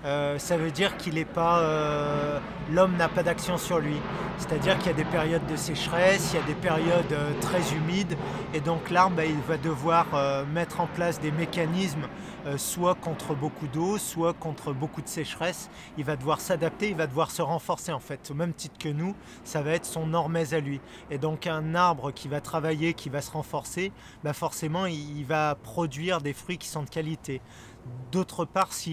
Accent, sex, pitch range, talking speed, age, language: French, male, 140-165 Hz, 210 wpm, 30-49, French